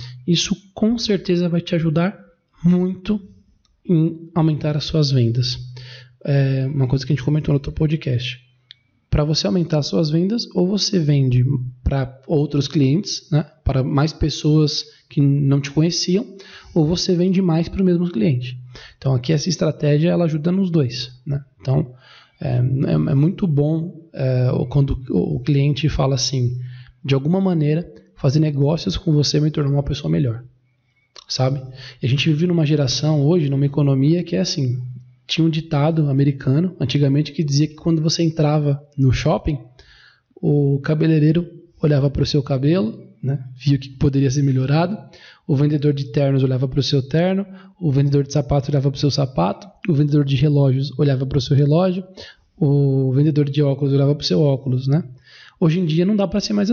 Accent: Brazilian